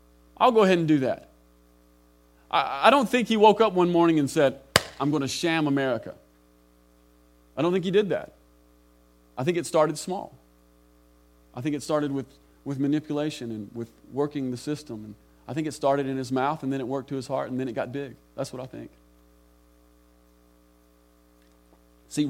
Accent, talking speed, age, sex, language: American, 190 wpm, 30-49, male, English